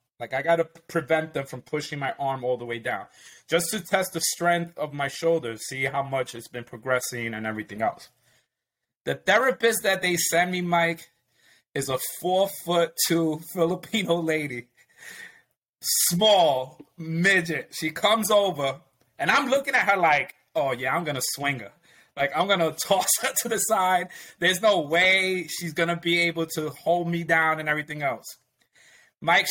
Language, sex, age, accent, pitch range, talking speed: English, male, 30-49, American, 130-175 Hz, 180 wpm